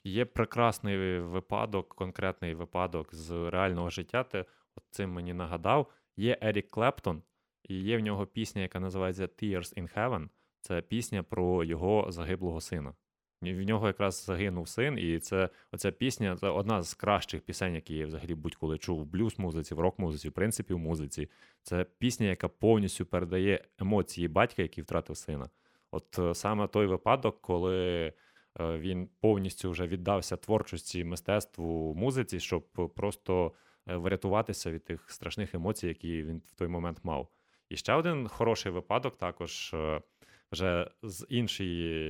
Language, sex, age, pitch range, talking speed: Ukrainian, male, 20-39, 85-105 Hz, 145 wpm